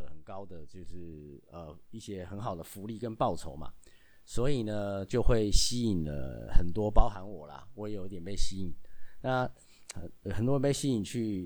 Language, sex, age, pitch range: Chinese, male, 30-49, 90-120 Hz